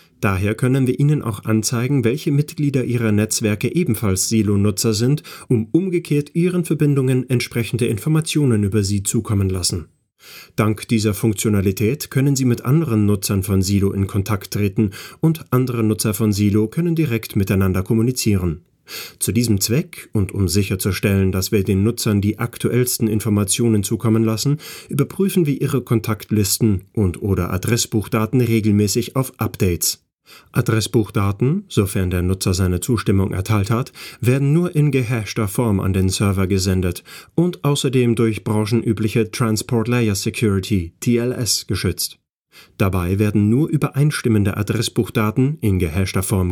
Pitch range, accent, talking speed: 100-125 Hz, German, 135 wpm